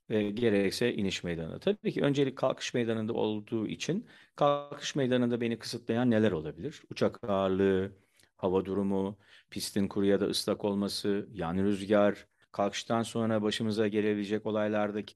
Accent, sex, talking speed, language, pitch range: native, male, 130 wpm, Turkish, 100-130 Hz